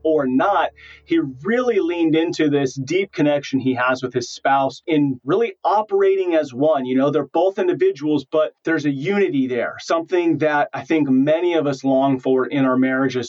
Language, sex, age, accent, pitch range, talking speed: English, male, 30-49, American, 135-190 Hz, 185 wpm